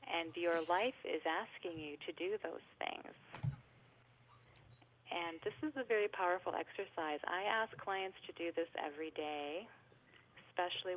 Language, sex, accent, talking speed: English, female, American, 140 wpm